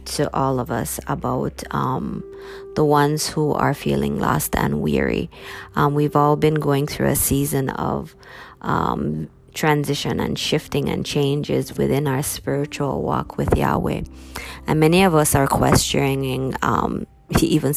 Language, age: English, 20-39